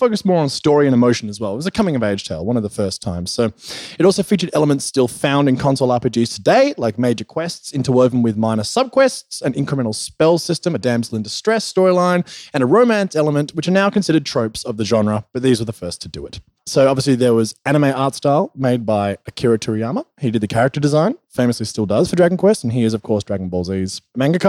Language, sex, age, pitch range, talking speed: English, male, 20-39, 120-180 Hz, 240 wpm